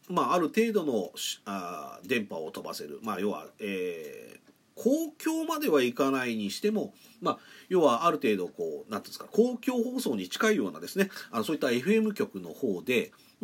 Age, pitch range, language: 40-59, 160-260 Hz, Japanese